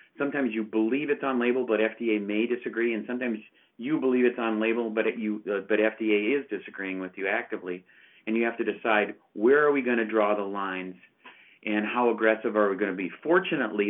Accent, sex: American, male